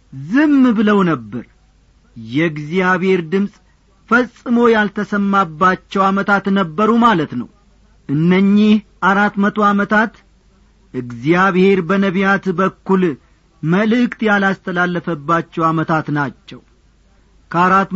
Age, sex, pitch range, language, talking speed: 40-59, male, 175-215 Hz, Amharic, 75 wpm